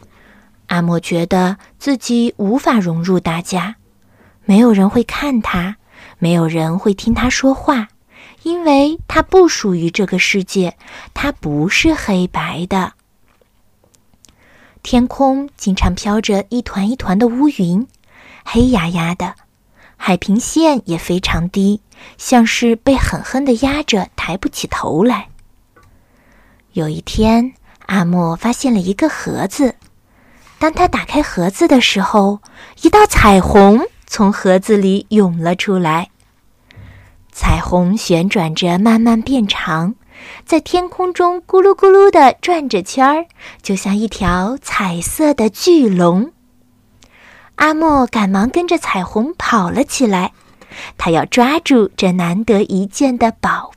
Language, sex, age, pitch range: Chinese, female, 20-39, 180-265 Hz